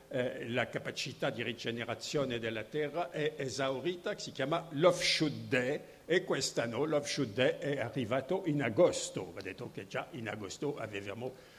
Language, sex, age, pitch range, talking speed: Italian, male, 60-79, 135-175 Hz, 145 wpm